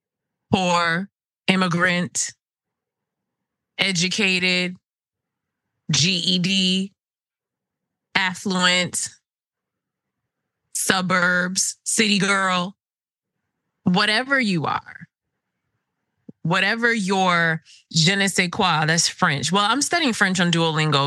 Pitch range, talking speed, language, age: 165-215 Hz, 70 wpm, English, 20-39